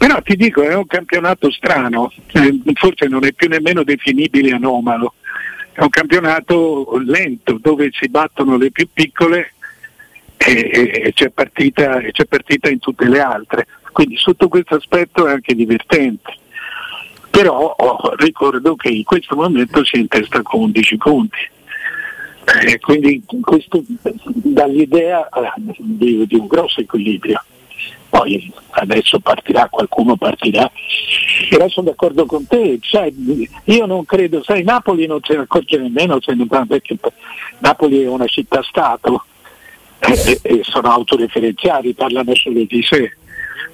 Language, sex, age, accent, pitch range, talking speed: Italian, male, 60-79, native, 135-200 Hz, 130 wpm